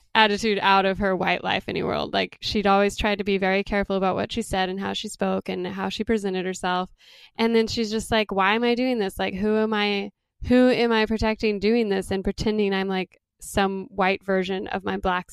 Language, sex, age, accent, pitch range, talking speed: English, female, 10-29, American, 195-225 Hz, 230 wpm